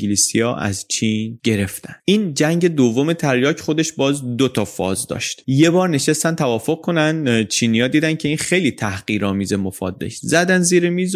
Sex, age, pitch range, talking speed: male, 30-49, 110-150 Hz, 155 wpm